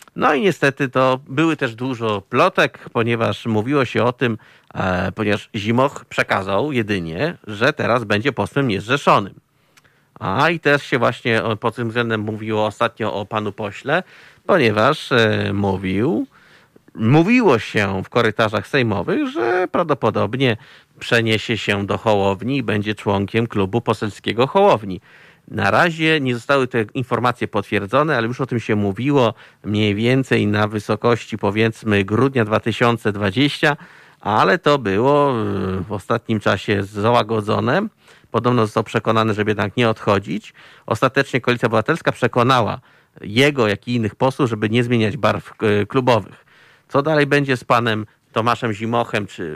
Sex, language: male, Polish